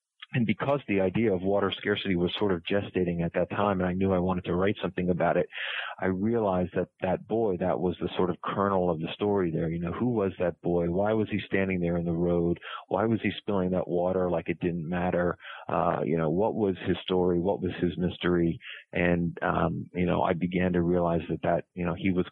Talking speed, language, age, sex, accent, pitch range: 235 wpm, English, 40-59, male, American, 85-95 Hz